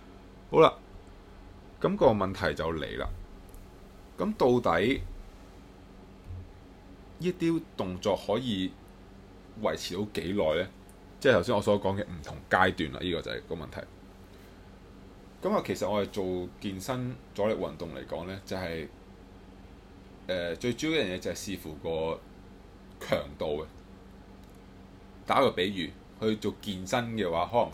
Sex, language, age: male, Chinese, 20-39